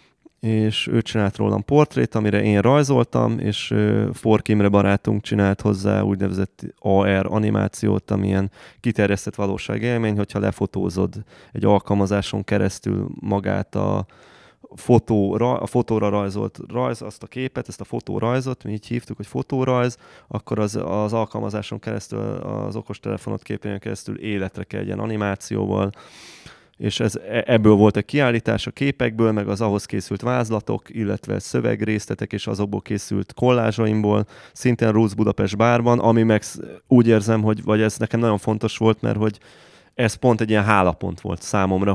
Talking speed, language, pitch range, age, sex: 140 wpm, Hungarian, 100-115 Hz, 20-39, male